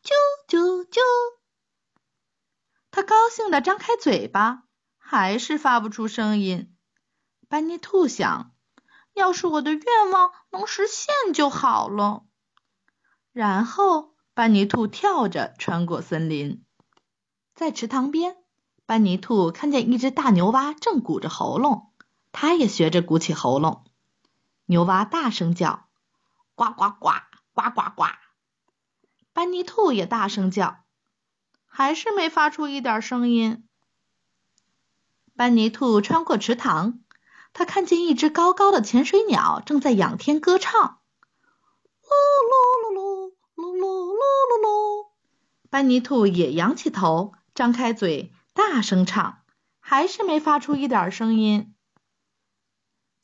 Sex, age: female, 20-39